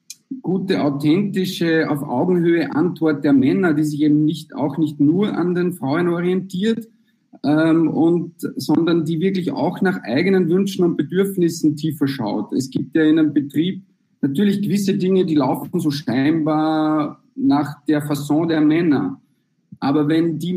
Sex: male